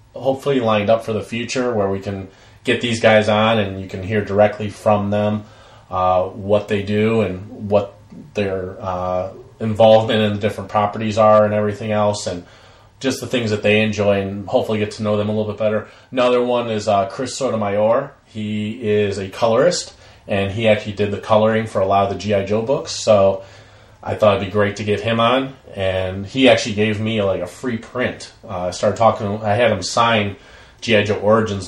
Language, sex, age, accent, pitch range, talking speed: English, male, 30-49, American, 100-110 Hz, 205 wpm